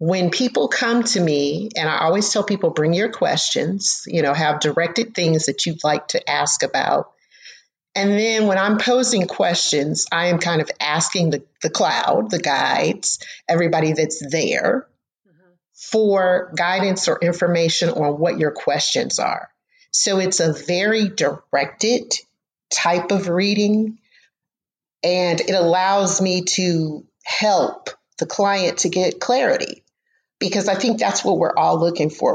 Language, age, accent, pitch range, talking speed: English, 40-59, American, 160-200 Hz, 150 wpm